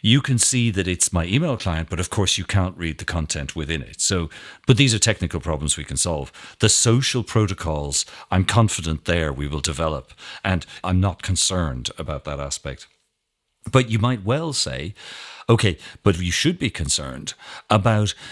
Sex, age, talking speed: male, 50-69, 180 wpm